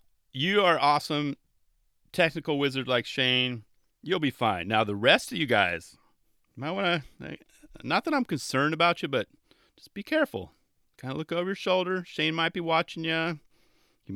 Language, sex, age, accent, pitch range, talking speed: English, male, 30-49, American, 100-150 Hz, 175 wpm